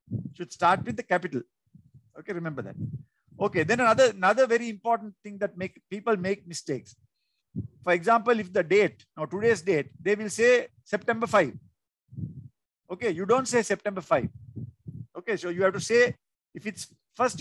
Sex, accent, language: male, native, Tamil